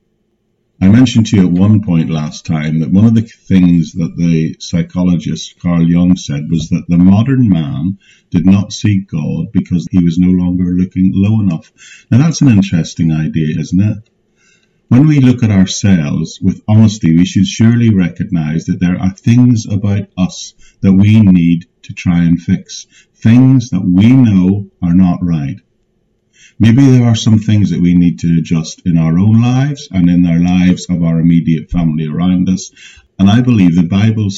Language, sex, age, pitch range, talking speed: English, male, 50-69, 85-110 Hz, 180 wpm